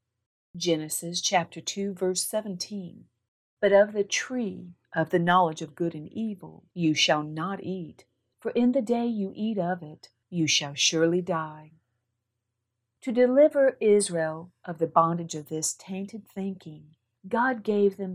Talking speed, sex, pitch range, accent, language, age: 150 wpm, female, 155-200 Hz, American, English, 50-69